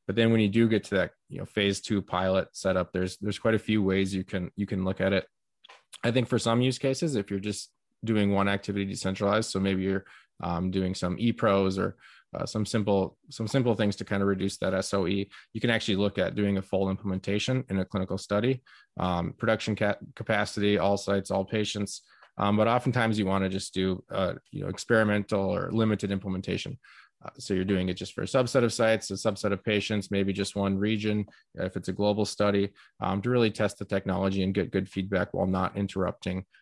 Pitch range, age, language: 95-105 Hz, 20-39, English